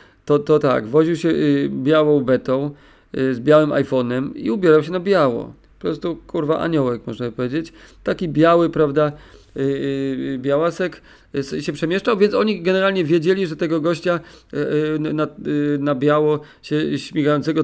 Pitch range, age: 145-170 Hz, 40-59